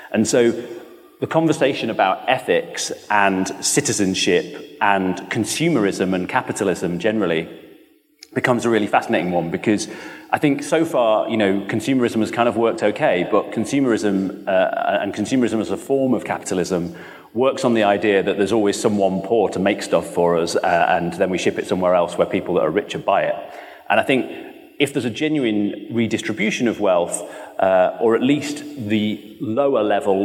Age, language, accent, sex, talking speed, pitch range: 30-49, English, British, male, 175 wpm, 100-125 Hz